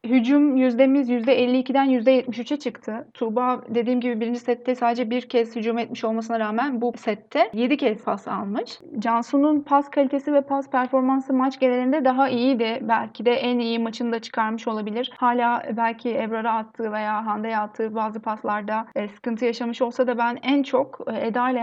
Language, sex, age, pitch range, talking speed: Turkish, female, 30-49, 230-275 Hz, 160 wpm